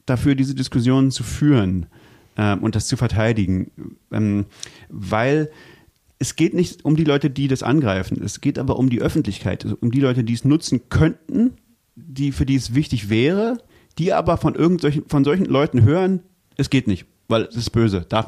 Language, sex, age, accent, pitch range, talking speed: German, male, 30-49, German, 115-150 Hz, 185 wpm